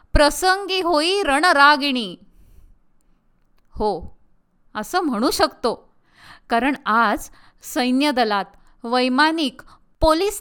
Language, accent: Marathi, native